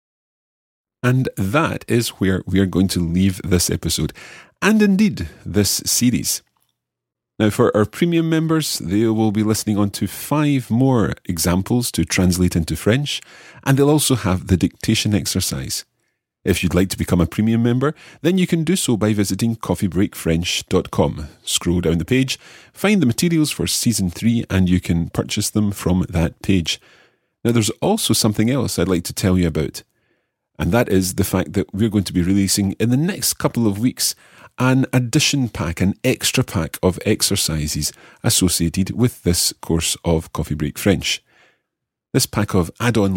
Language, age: English, 30-49